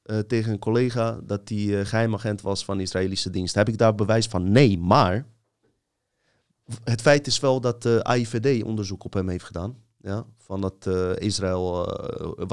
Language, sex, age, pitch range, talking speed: Dutch, male, 30-49, 100-120 Hz, 175 wpm